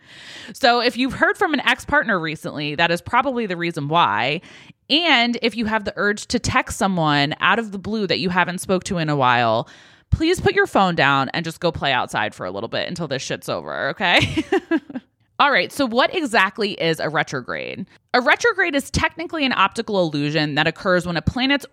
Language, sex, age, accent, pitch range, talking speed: English, female, 20-39, American, 155-235 Hz, 205 wpm